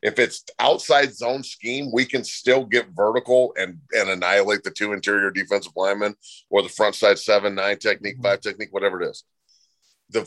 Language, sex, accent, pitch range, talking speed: English, male, American, 110-160 Hz, 180 wpm